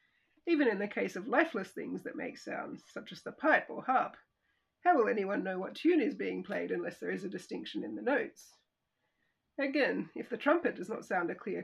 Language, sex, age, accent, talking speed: English, female, 40-59, Australian, 215 wpm